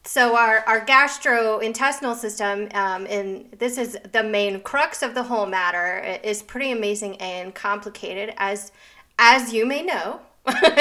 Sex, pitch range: female, 200-245 Hz